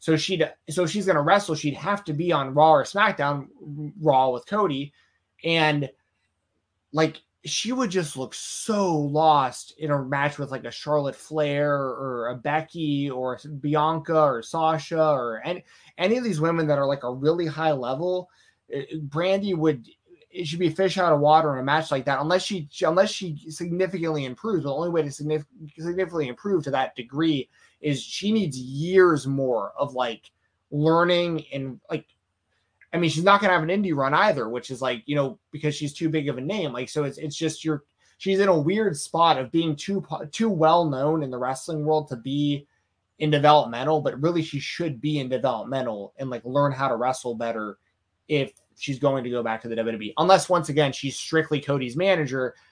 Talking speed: 195 wpm